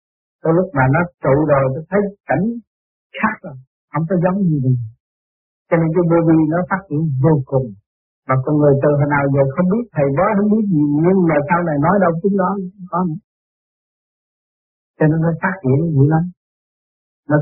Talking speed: 195 wpm